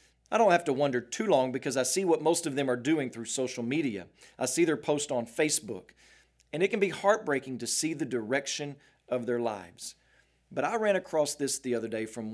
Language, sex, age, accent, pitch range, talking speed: English, male, 40-59, American, 120-155 Hz, 225 wpm